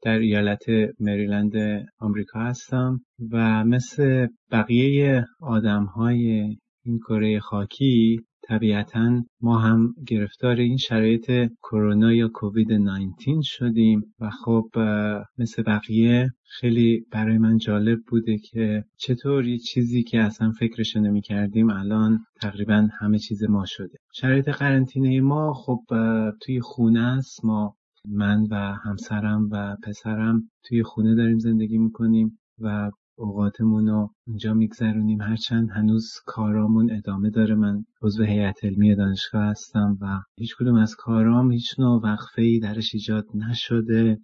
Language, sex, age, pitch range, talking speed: Persian, male, 30-49, 105-115 Hz, 125 wpm